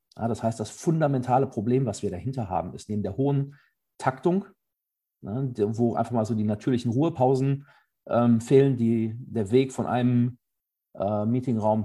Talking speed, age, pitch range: 145 wpm, 40-59, 110-130 Hz